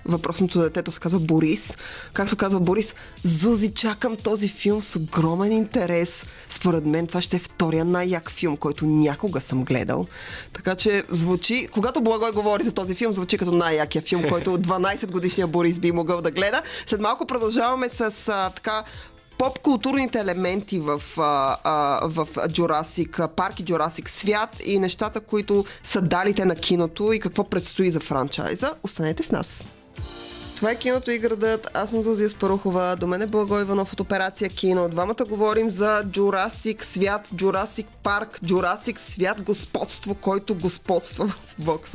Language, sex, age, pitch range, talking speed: Bulgarian, female, 20-39, 165-210 Hz, 160 wpm